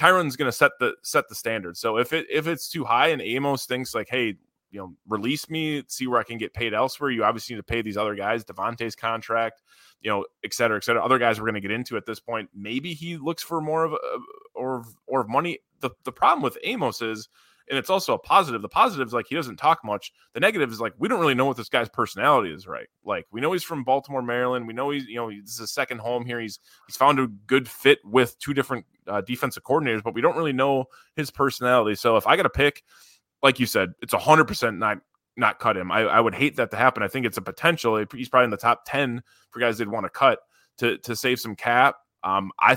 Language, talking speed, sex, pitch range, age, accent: English, 255 wpm, male, 115-140 Hz, 20-39, American